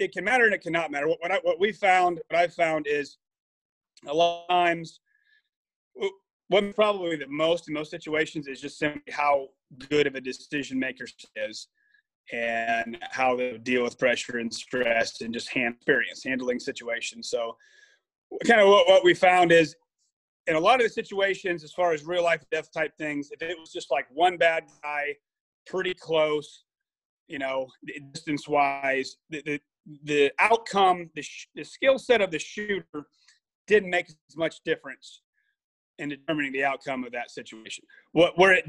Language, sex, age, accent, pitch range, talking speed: English, male, 30-49, American, 145-185 Hz, 180 wpm